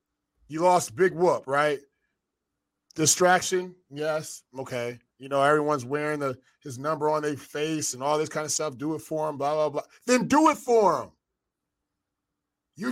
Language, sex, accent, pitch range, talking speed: English, male, American, 140-185 Hz, 165 wpm